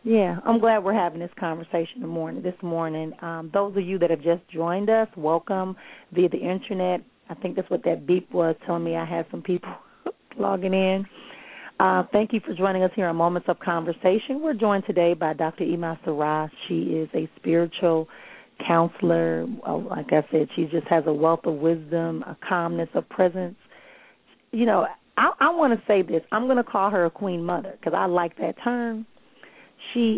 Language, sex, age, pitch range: English, female, 30-49, 165-195 Hz